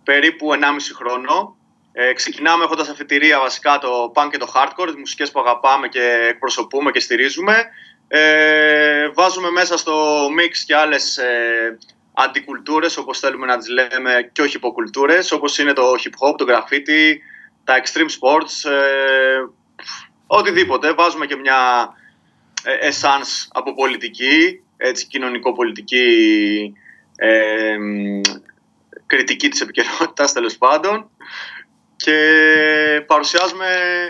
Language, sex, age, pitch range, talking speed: Greek, male, 20-39, 130-165 Hz, 115 wpm